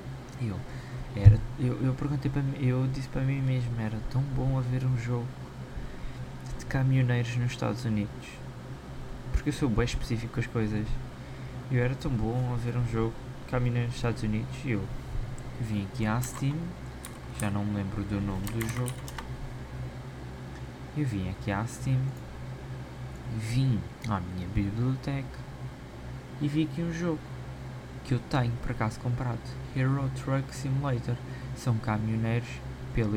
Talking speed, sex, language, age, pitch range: 145 wpm, male, Portuguese, 20-39, 110-130 Hz